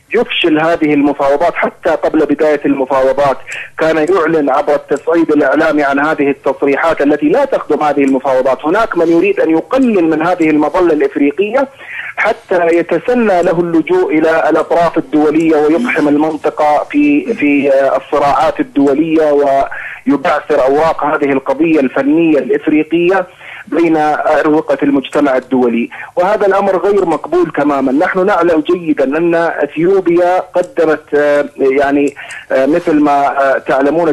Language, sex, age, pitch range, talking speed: Arabic, male, 30-49, 145-180 Hz, 115 wpm